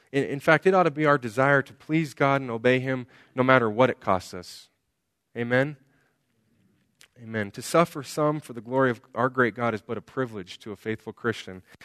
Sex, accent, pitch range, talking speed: male, American, 120-160 Hz, 205 wpm